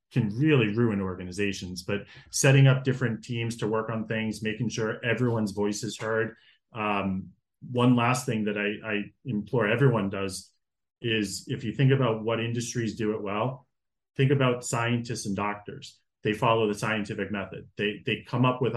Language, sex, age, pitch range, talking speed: English, male, 30-49, 105-125 Hz, 175 wpm